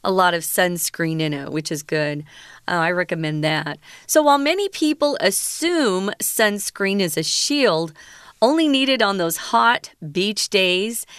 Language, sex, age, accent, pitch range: Chinese, female, 40-59, American, 170-225 Hz